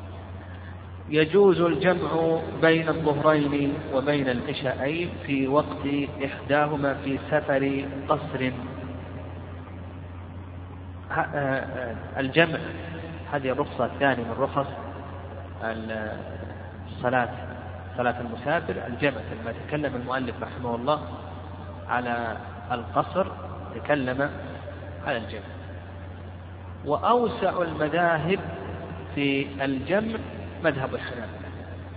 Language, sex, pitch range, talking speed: Arabic, male, 95-145 Hz, 70 wpm